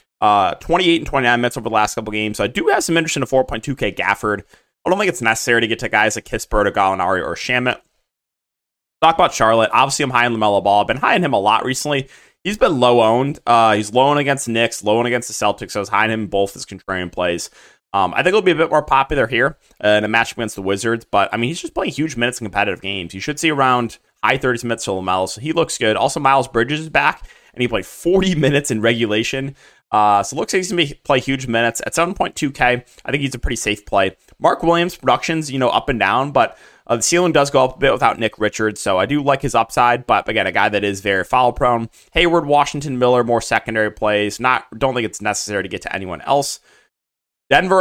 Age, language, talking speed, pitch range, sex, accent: 20-39, English, 255 wpm, 110-140 Hz, male, American